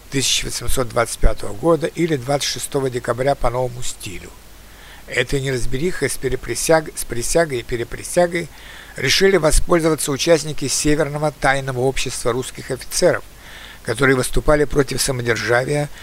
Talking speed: 100 wpm